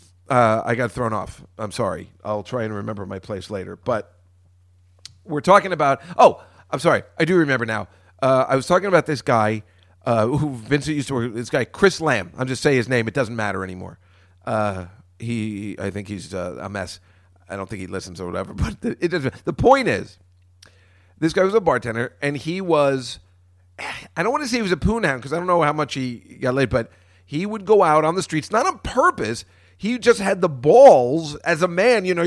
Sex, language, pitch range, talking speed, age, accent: male, English, 100-170 Hz, 225 wpm, 40-59, American